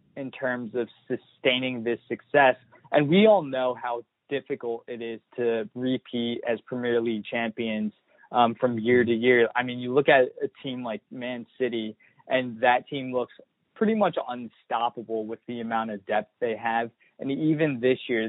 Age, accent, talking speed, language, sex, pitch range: 20-39, American, 175 wpm, English, male, 115-140 Hz